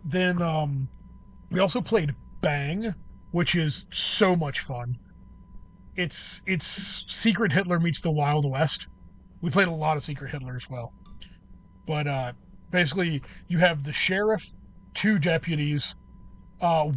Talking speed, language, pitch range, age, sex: 135 wpm, English, 135-175 Hz, 20-39, male